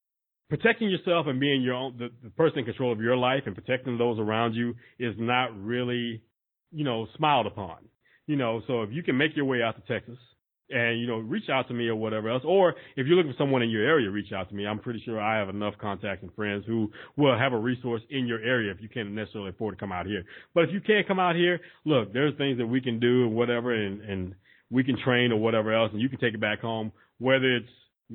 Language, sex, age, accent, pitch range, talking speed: English, male, 30-49, American, 110-135 Hz, 255 wpm